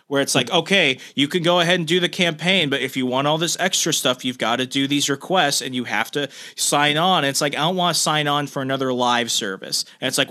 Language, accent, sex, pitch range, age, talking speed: English, American, male, 130-175 Hz, 30-49, 275 wpm